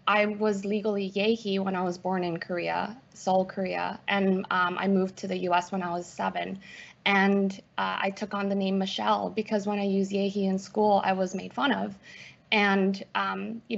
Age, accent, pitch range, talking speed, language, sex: 20-39, American, 190-220 Hz, 200 wpm, English, female